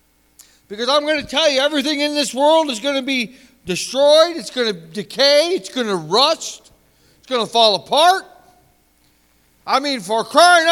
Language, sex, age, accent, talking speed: English, male, 60-79, American, 180 wpm